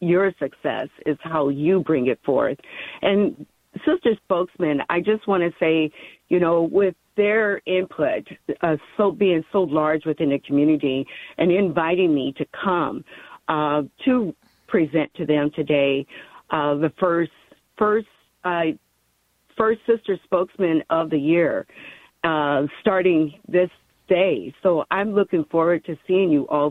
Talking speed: 140 wpm